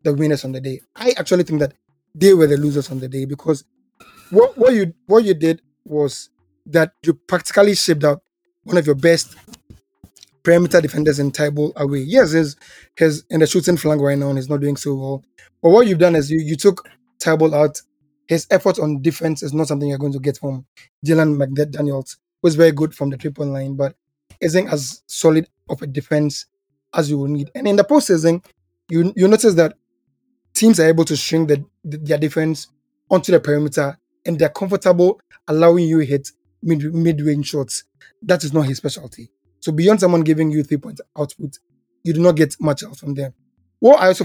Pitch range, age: 140-170 Hz, 20-39